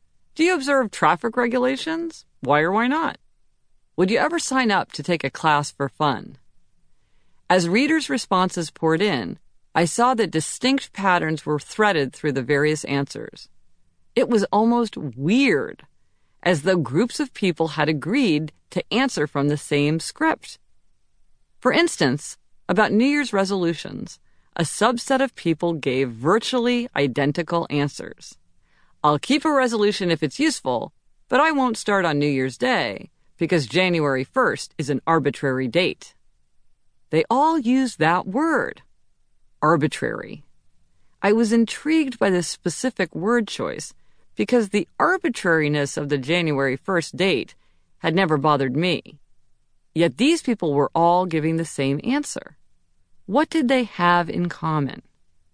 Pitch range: 150-245 Hz